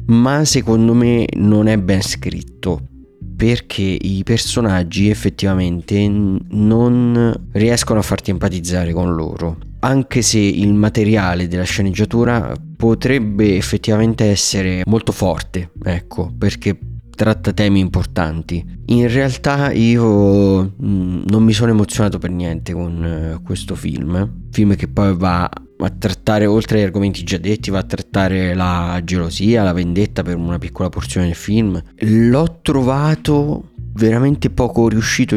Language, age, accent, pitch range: Italian, 30-49, native, 90-115 Hz